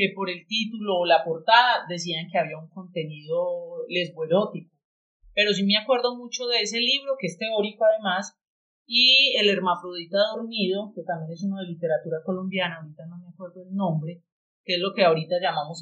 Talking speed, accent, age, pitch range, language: 180 wpm, Colombian, 30-49, 175-220 Hz, Spanish